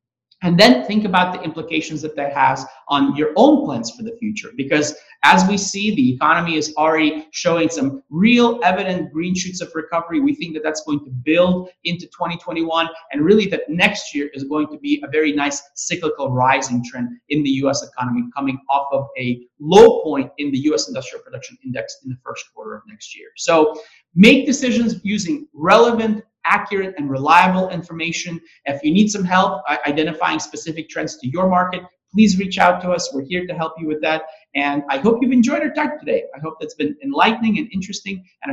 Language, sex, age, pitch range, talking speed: English, male, 30-49, 145-210 Hz, 200 wpm